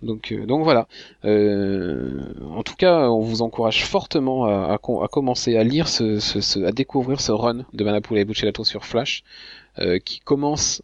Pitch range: 100-125 Hz